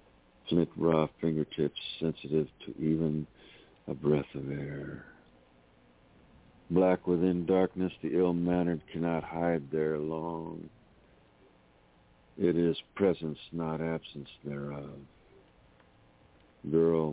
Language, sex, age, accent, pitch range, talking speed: English, male, 60-79, American, 70-85 Hz, 90 wpm